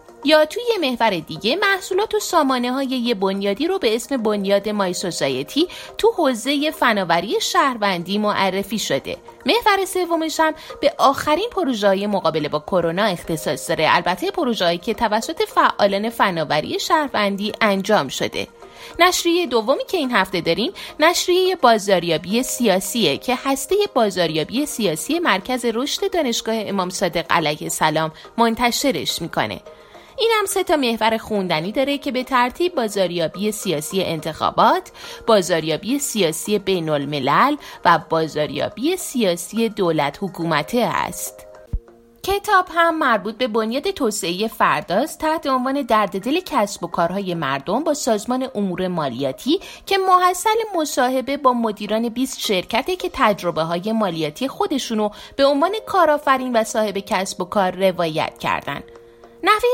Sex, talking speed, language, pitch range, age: female, 130 wpm, Persian, 185-310 Hz, 30-49